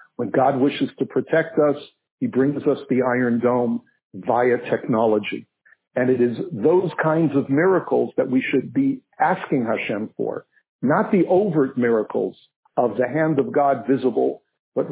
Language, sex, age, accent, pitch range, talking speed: English, male, 50-69, American, 115-135 Hz, 155 wpm